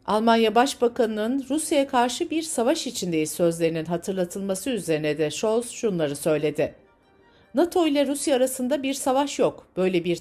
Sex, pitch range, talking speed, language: female, 175-260 Hz, 135 wpm, Turkish